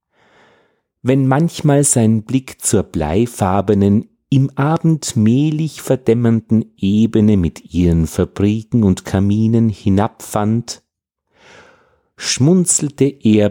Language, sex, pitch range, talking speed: German, male, 90-135 Hz, 85 wpm